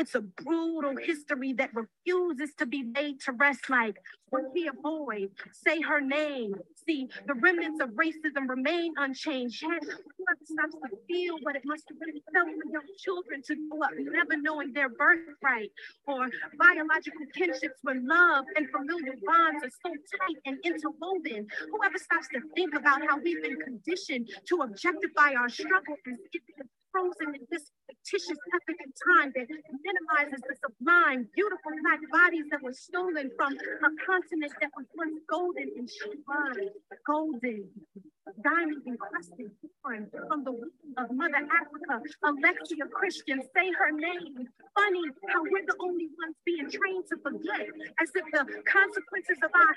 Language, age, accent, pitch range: English, 40-59, American, 280-355 Hz